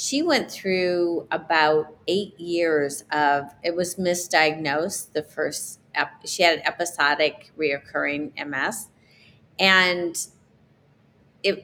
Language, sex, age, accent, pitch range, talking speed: English, female, 30-49, American, 150-190 Hz, 110 wpm